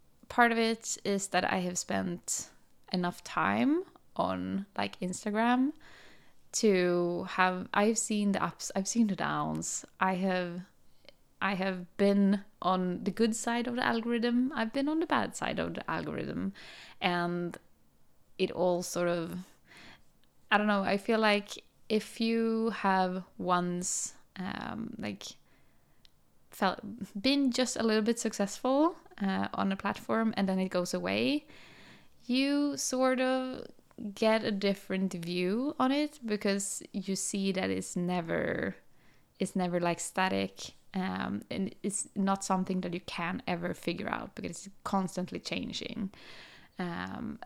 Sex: female